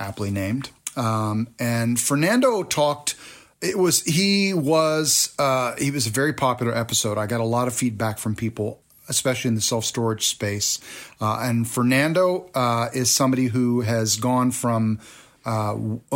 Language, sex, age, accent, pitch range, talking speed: English, male, 40-59, American, 115-135 Hz, 150 wpm